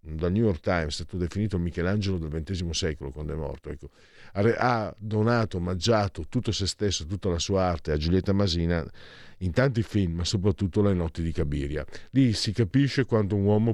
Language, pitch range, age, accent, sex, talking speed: Italian, 85-120 Hz, 50-69, native, male, 185 wpm